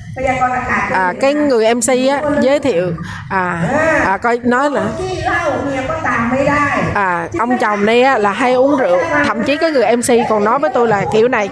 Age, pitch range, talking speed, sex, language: 20-39, 205-265 Hz, 165 wpm, female, Vietnamese